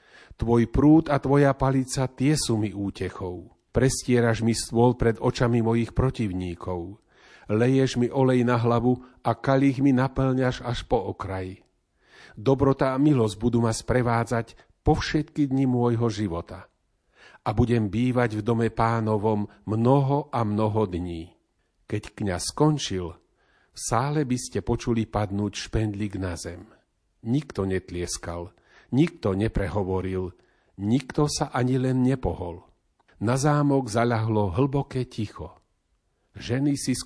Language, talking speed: Slovak, 125 wpm